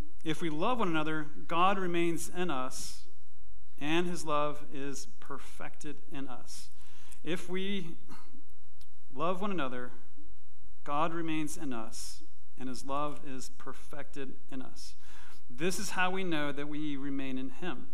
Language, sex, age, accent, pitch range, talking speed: English, male, 40-59, American, 120-170 Hz, 140 wpm